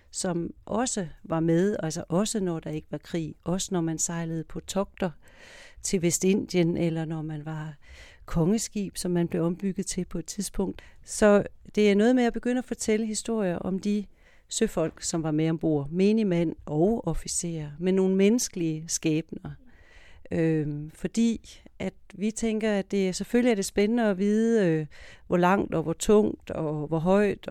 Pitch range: 155-195 Hz